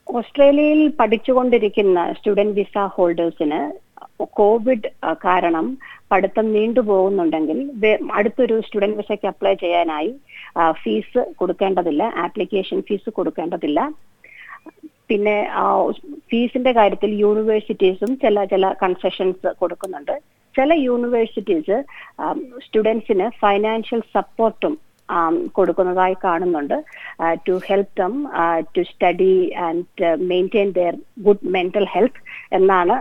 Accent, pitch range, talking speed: native, 180-230 Hz, 80 wpm